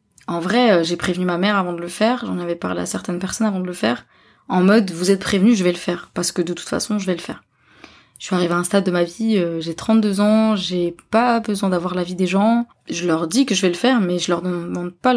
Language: French